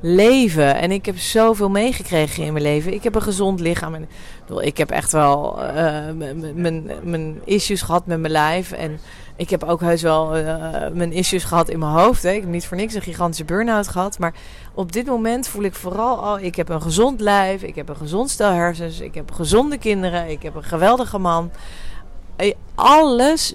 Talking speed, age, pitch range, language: 200 wpm, 40-59, 170-225 Hz, Dutch